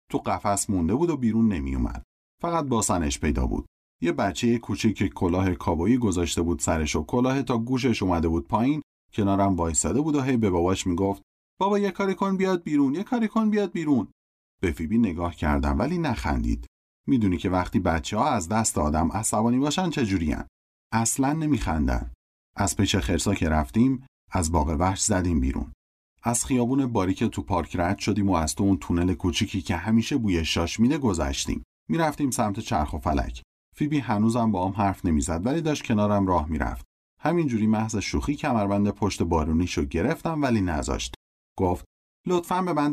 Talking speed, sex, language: 170 wpm, male, Persian